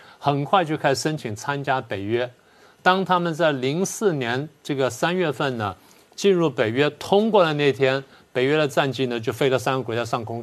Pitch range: 120-160 Hz